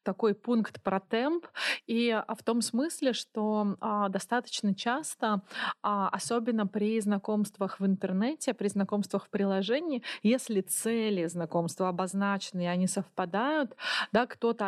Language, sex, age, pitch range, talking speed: Russian, female, 20-39, 195-230 Hz, 125 wpm